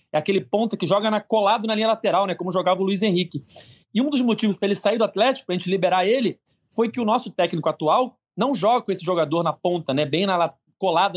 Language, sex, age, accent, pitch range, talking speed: Portuguese, male, 30-49, Brazilian, 170-220 Hz, 255 wpm